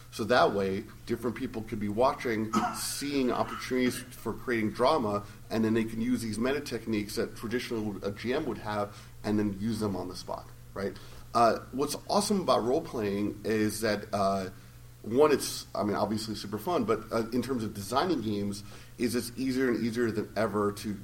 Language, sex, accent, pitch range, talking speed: English, male, American, 105-120 Hz, 185 wpm